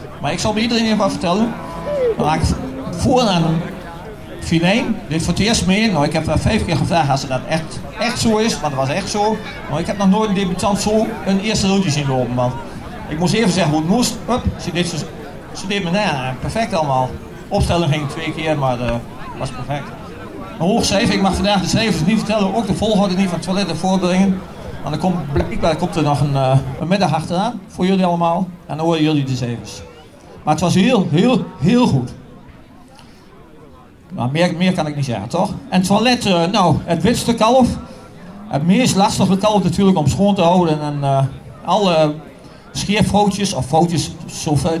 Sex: male